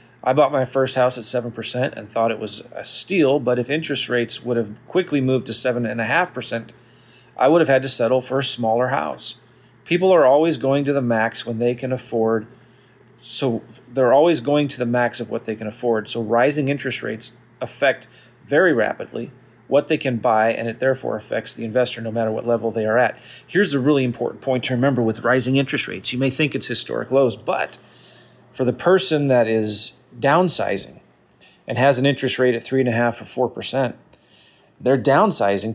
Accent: American